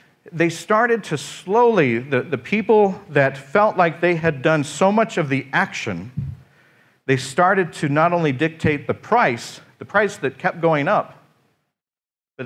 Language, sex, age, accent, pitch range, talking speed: English, male, 50-69, American, 130-175 Hz, 160 wpm